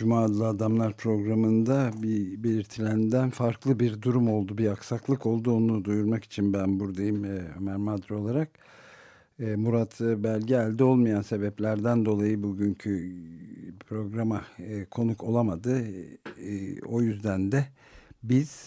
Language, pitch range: Turkish, 95-115 Hz